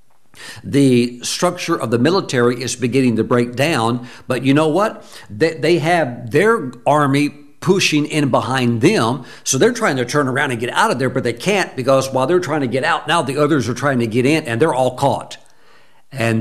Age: 60-79